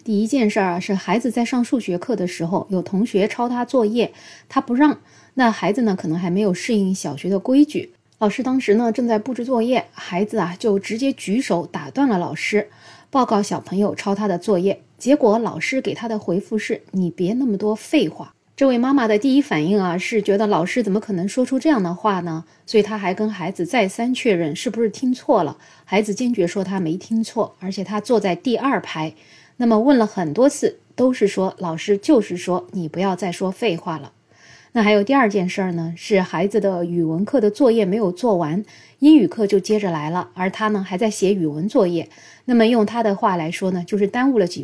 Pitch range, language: 180-235 Hz, Chinese